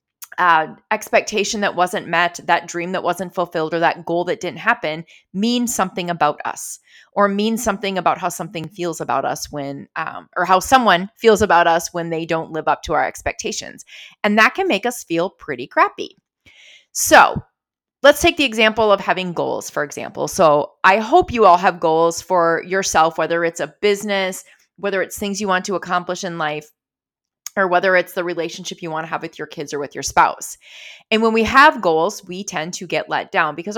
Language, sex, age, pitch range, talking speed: English, female, 30-49, 170-220 Hz, 200 wpm